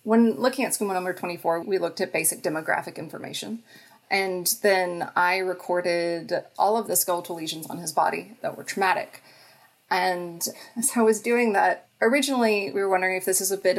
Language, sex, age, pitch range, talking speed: English, female, 30-49, 185-240 Hz, 185 wpm